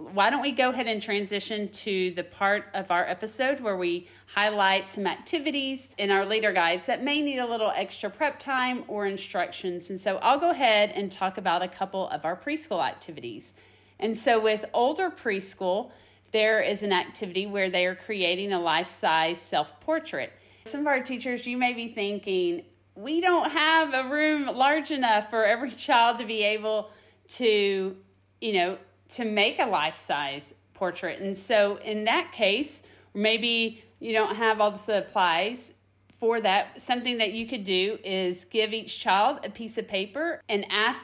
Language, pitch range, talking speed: English, 190-240 Hz, 175 wpm